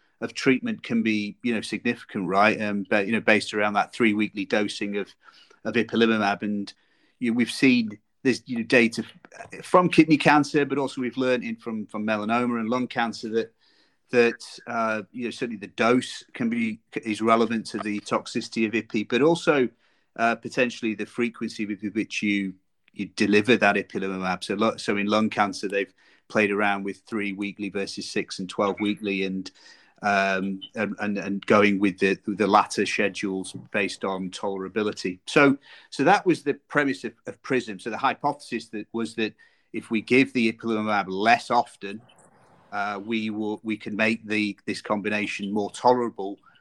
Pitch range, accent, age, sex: 100-120 Hz, British, 30-49, male